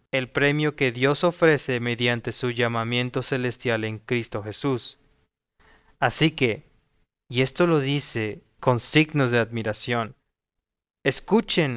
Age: 30-49